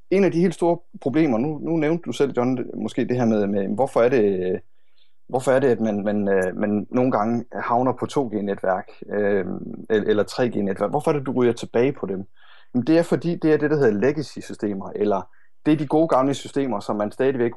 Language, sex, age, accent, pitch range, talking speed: Danish, male, 30-49, native, 110-155 Hz, 220 wpm